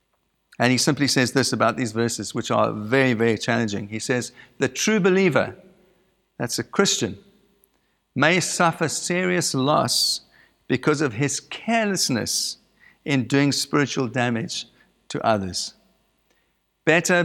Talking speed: 125 wpm